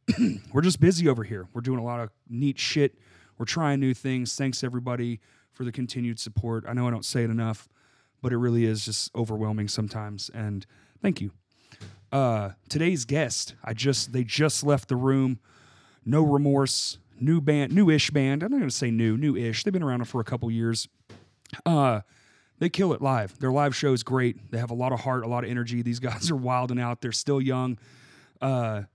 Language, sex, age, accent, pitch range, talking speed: English, male, 30-49, American, 115-140 Hz, 205 wpm